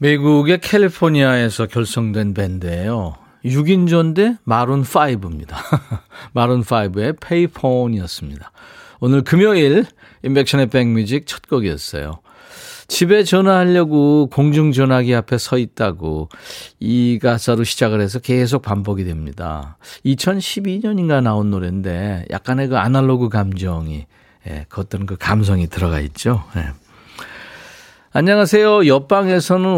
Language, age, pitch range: Korean, 40-59, 95-140 Hz